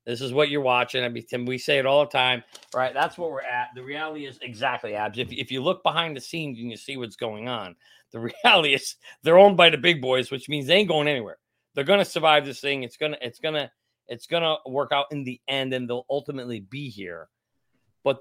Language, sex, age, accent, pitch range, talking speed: English, male, 40-59, American, 125-155 Hz, 245 wpm